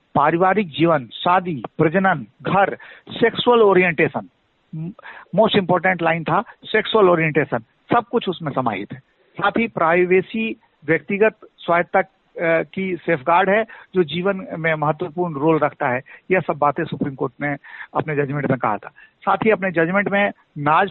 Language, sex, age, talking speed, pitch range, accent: Hindi, male, 50-69, 140 wpm, 155-195 Hz, native